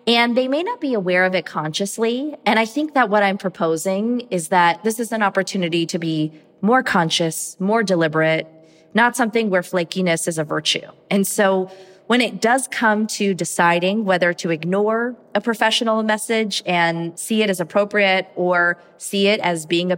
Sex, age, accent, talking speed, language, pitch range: female, 30-49, American, 180 wpm, English, 175-255 Hz